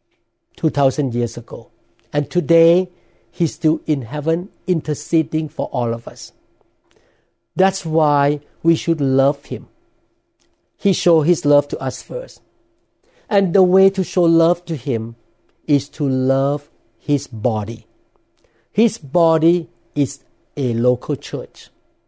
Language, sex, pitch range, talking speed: English, male, 130-170 Hz, 125 wpm